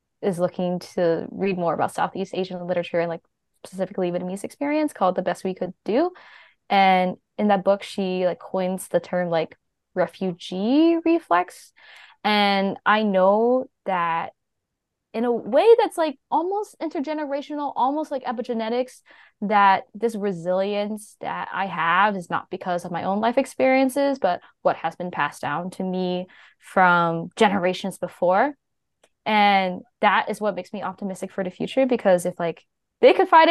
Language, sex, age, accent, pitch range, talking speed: English, female, 10-29, American, 185-250 Hz, 155 wpm